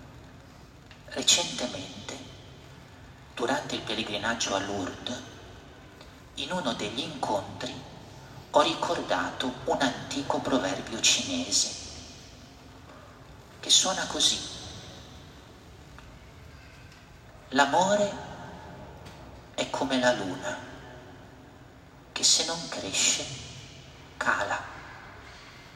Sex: male